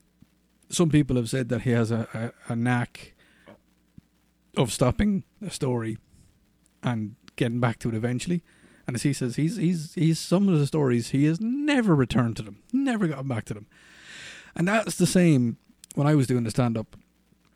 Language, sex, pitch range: English, male, 110-145 Hz